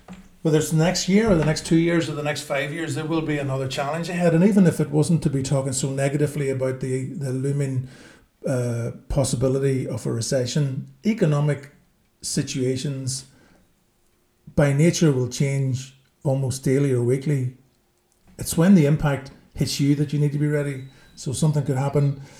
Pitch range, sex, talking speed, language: 130-150 Hz, male, 175 wpm, English